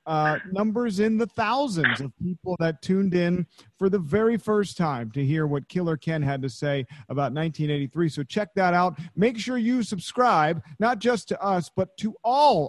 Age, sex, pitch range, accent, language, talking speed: 40-59, male, 145-195 Hz, American, English, 190 wpm